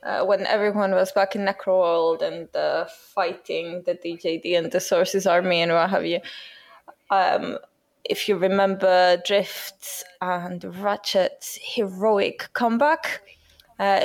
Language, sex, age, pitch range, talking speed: English, female, 20-39, 185-225 Hz, 130 wpm